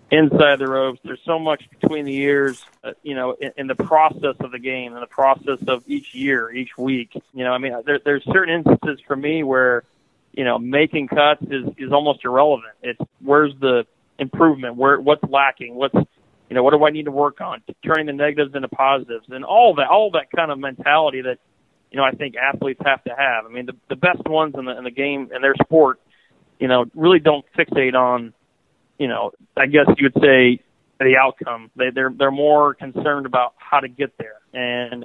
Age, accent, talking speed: 40-59, American, 215 wpm